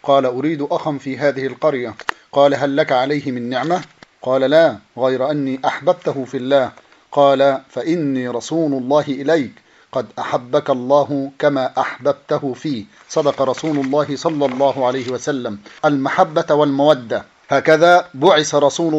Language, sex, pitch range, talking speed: Arabic, male, 135-165 Hz, 135 wpm